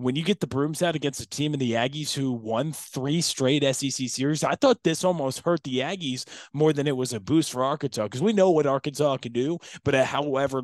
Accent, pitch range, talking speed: American, 115-140 Hz, 245 wpm